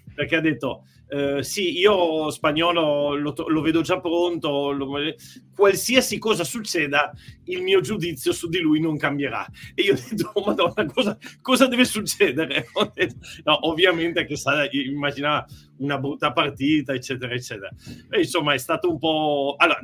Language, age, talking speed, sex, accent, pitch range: Italian, 40-59, 155 wpm, male, native, 130-165 Hz